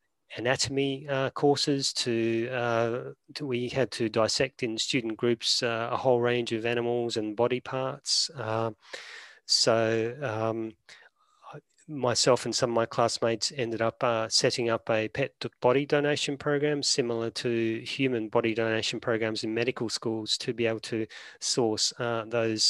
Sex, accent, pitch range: male, Australian, 110-125 Hz